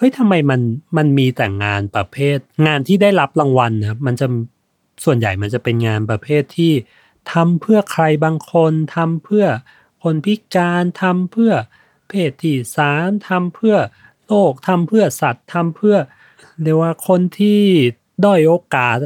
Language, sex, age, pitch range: Thai, male, 30-49, 125-170 Hz